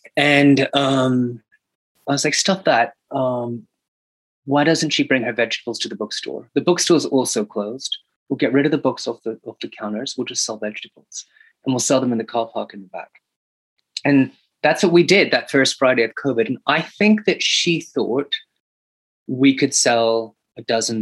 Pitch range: 110-140 Hz